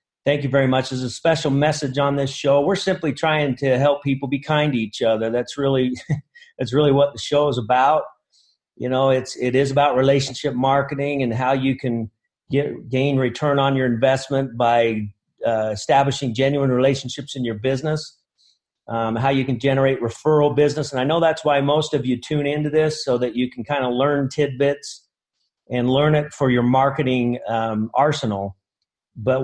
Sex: male